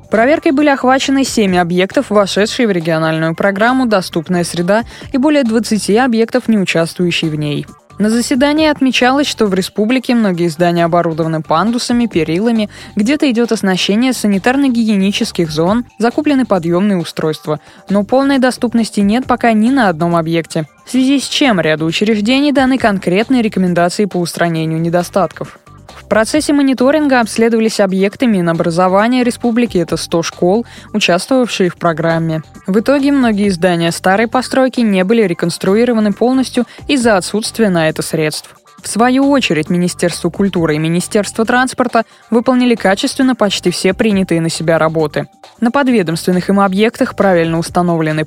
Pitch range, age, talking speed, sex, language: 170-245 Hz, 20-39, 135 wpm, female, Russian